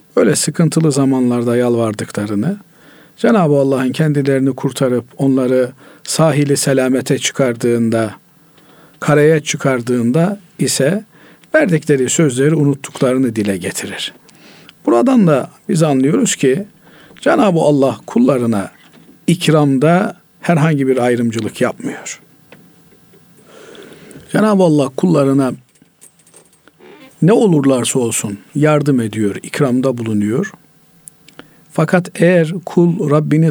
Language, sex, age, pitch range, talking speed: Turkish, male, 50-69, 130-165 Hz, 85 wpm